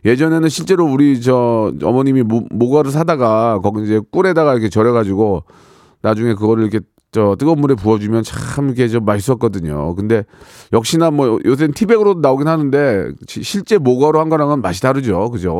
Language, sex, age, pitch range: Korean, male, 40-59, 110-155 Hz